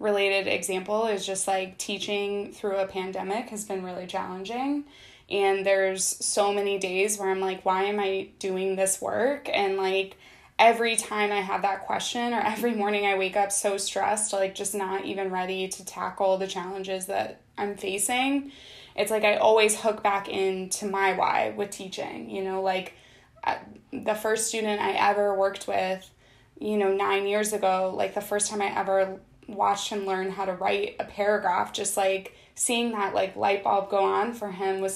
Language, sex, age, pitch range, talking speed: English, female, 20-39, 190-215 Hz, 185 wpm